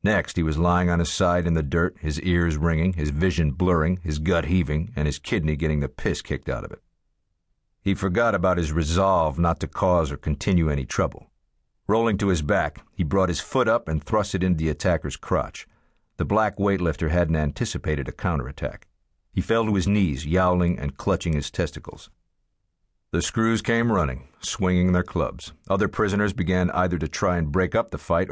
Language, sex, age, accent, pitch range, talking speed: English, male, 50-69, American, 75-95 Hz, 195 wpm